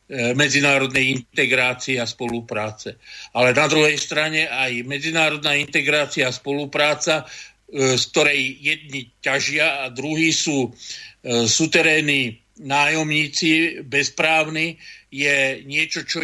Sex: male